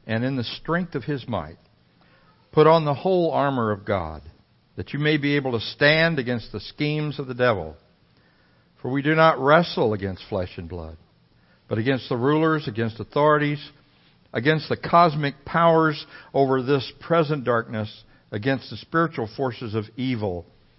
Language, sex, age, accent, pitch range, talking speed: English, male, 60-79, American, 110-155 Hz, 160 wpm